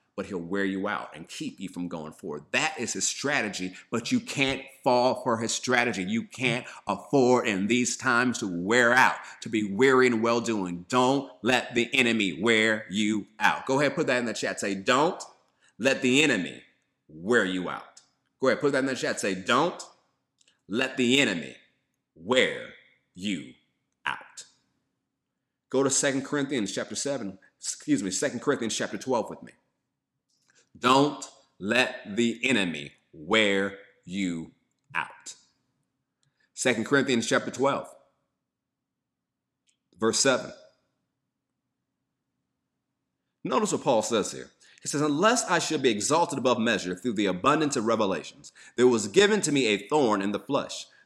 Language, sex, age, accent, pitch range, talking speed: English, male, 30-49, American, 105-135 Hz, 150 wpm